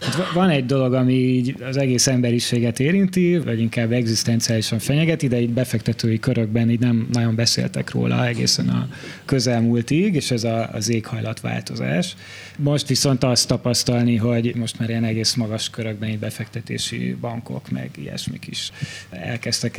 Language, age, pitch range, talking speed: Hungarian, 20-39, 110-125 Hz, 150 wpm